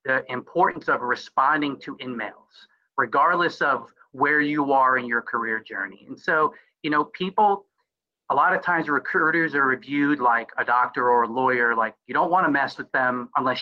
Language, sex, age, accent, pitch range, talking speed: English, male, 30-49, American, 125-170 Hz, 185 wpm